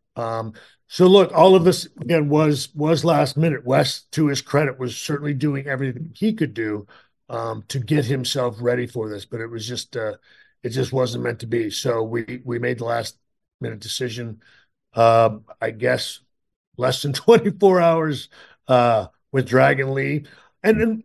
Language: English